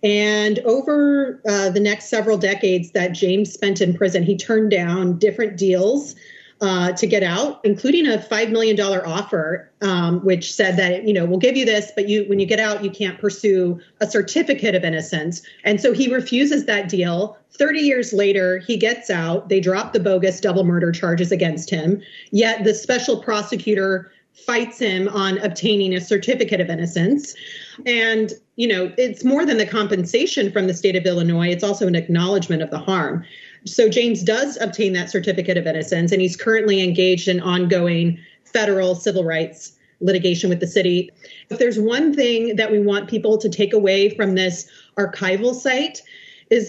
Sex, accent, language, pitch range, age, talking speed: female, American, English, 185-225 Hz, 30-49, 180 wpm